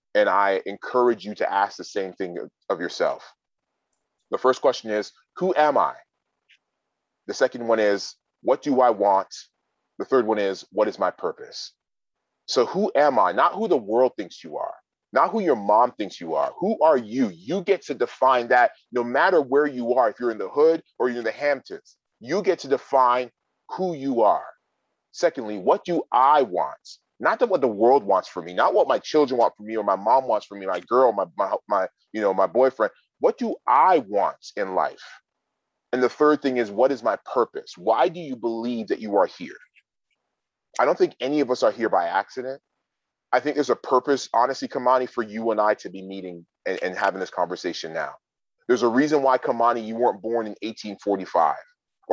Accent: American